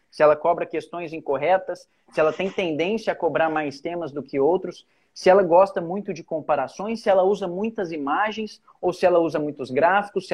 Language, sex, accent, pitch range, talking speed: Portuguese, male, Brazilian, 160-215 Hz, 195 wpm